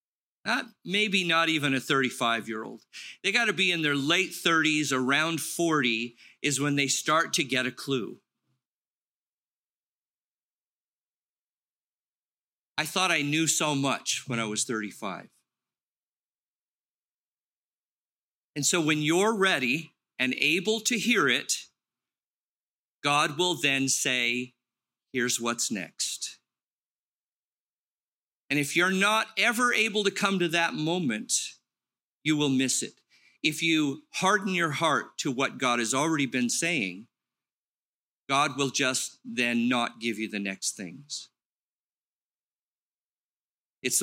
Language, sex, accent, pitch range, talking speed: English, male, American, 130-175 Hz, 120 wpm